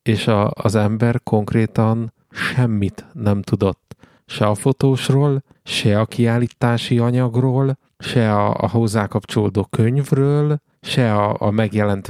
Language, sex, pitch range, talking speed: Hungarian, male, 105-125 Hz, 120 wpm